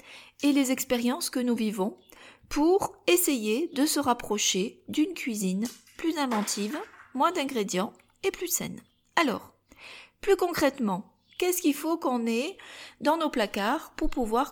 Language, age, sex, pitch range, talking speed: French, 40-59, female, 220-290 Hz, 135 wpm